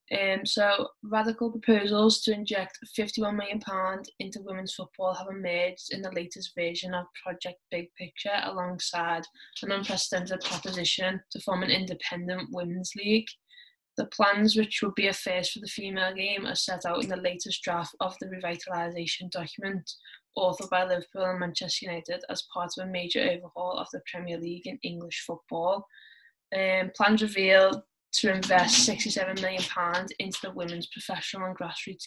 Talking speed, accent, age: 160 wpm, British, 10-29